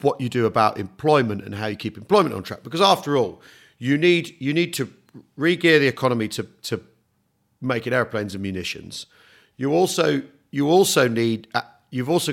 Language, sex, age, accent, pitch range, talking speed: English, male, 40-59, British, 110-150 Hz, 185 wpm